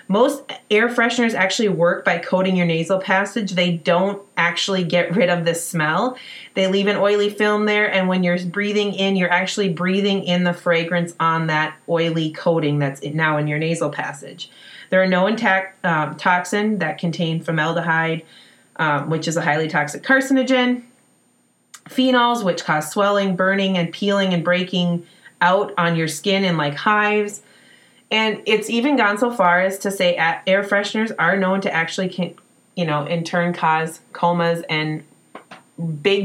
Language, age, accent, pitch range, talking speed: English, 30-49, American, 170-210 Hz, 165 wpm